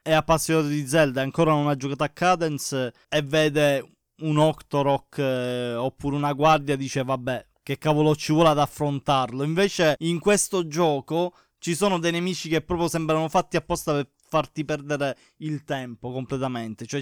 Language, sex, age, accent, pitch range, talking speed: Italian, male, 20-39, native, 145-170 Hz, 160 wpm